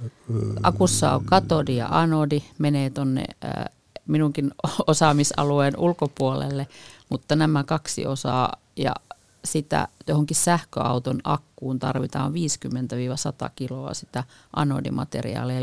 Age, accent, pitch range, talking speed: 50-69, native, 125-150 Hz, 90 wpm